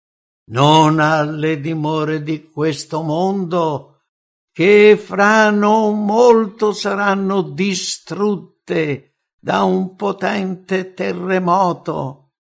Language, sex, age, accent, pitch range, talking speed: English, male, 60-79, Italian, 130-180 Hz, 75 wpm